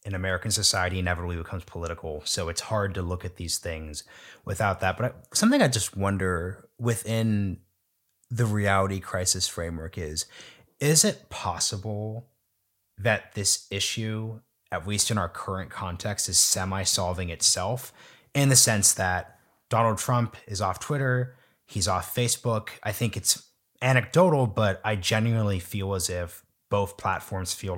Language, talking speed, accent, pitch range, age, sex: English, 145 wpm, American, 95-115 Hz, 30-49, male